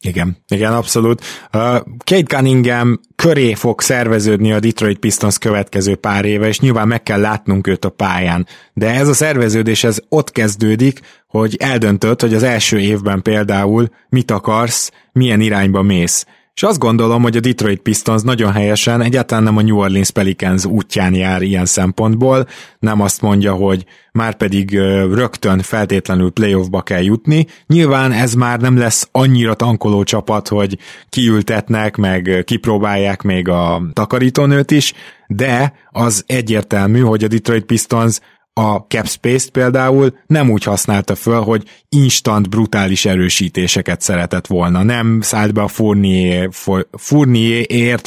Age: 20-39